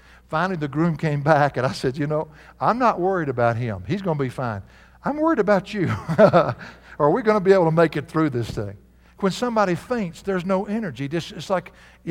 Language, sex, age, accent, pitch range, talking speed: English, male, 60-79, American, 135-195 Hz, 235 wpm